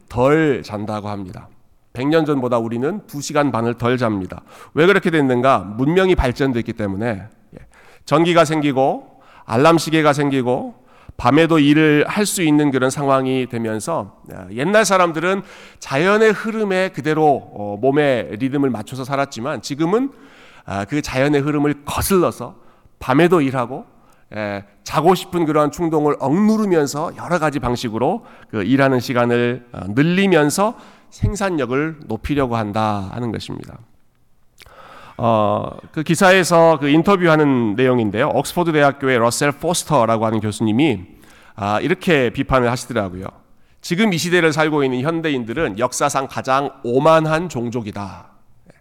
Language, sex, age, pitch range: Korean, male, 40-59, 115-160 Hz